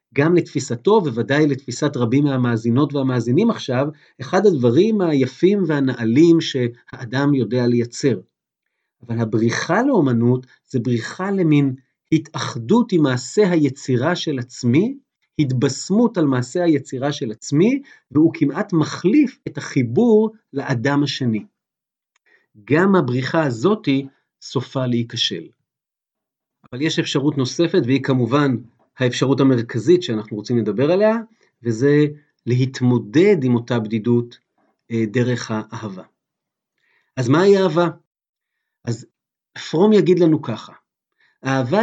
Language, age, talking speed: Hebrew, 40-59, 110 wpm